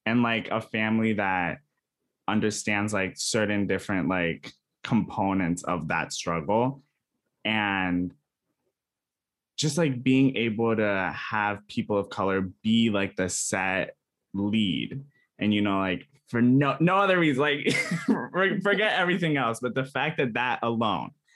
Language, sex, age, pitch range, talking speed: English, male, 20-39, 105-140 Hz, 135 wpm